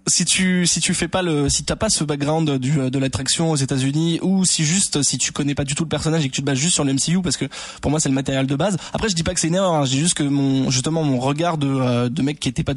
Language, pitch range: French, 135-170 Hz